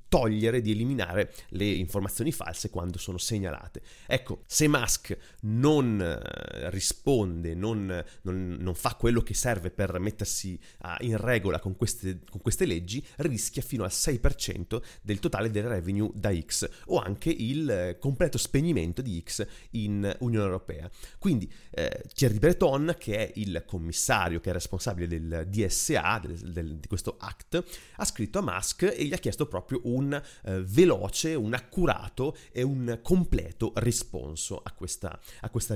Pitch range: 95-120 Hz